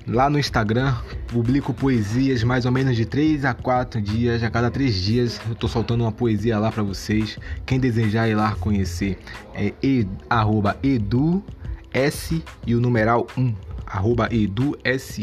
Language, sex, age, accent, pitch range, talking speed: Portuguese, male, 20-39, Brazilian, 100-125 Hz, 155 wpm